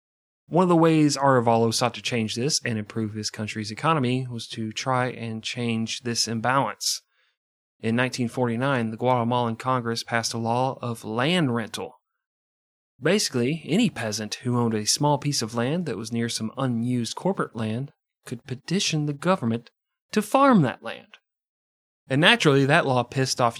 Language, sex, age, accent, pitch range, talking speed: English, male, 30-49, American, 115-140 Hz, 160 wpm